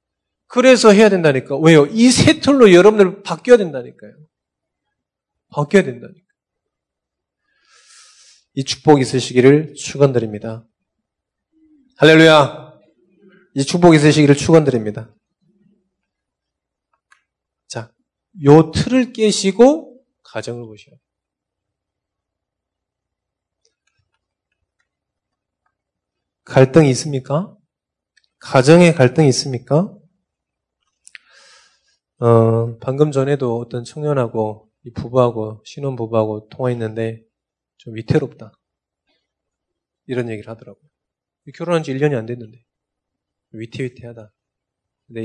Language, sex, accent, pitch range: Korean, male, native, 115-170 Hz